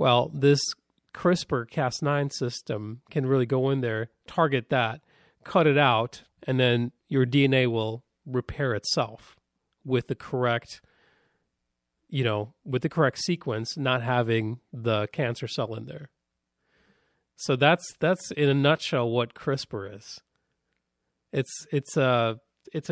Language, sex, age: English, male, 40-59